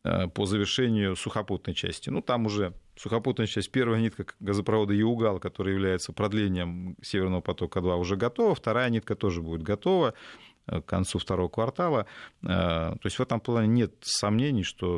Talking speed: 150 wpm